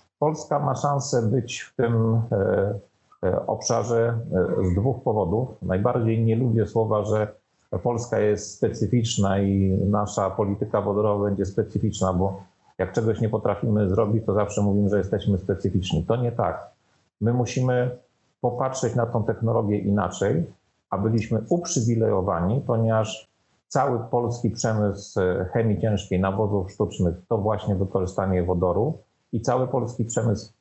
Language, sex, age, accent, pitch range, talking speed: Polish, male, 40-59, native, 100-115 Hz, 125 wpm